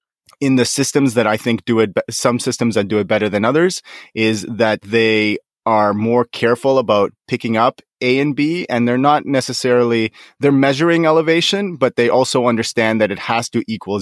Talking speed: 190 wpm